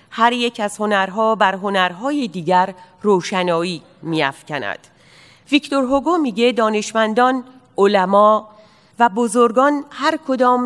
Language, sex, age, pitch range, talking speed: Persian, female, 40-59, 180-240 Hz, 100 wpm